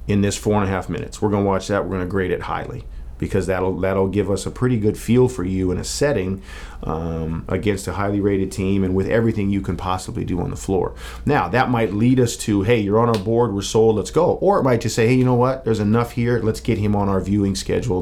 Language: English